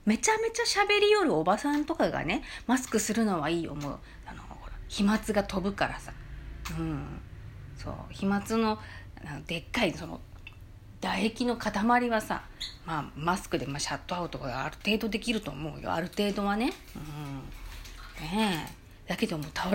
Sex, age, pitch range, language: female, 40-59, 145-220 Hz, Japanese